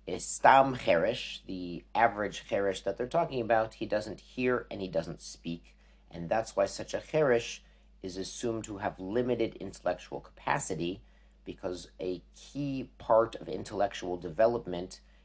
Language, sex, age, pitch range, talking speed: English, male, 50-69, 90-115 Hz, 145 wpm